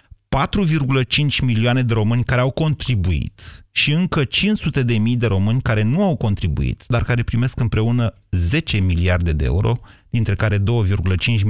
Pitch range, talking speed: 100-140 Hz, 150 wpm